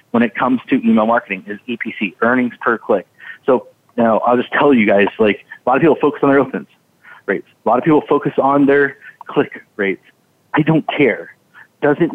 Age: 30-49